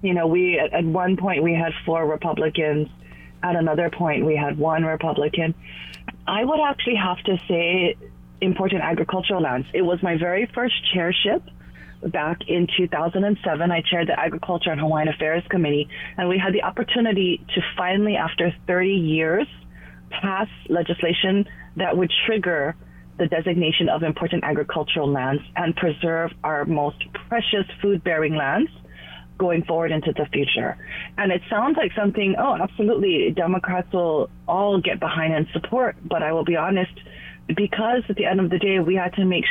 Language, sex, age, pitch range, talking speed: English, female, 30-49, 155-195 Hz, 160 wpm